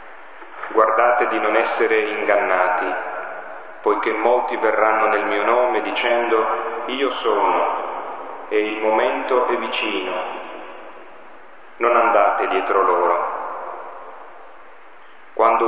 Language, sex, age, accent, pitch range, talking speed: Italian, male, 40-59, native, 105-125 Hz, 90 wpm